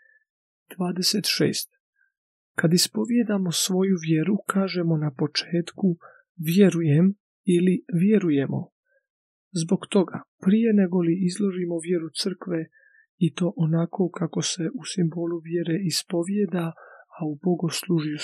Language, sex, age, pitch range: Croatian, male, 40-59, 165-215 Hz